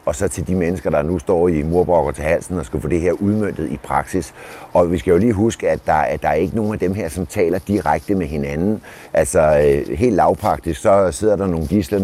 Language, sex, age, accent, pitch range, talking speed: Danish, male, 60-79, native, 80-100 Hz, 245 wpm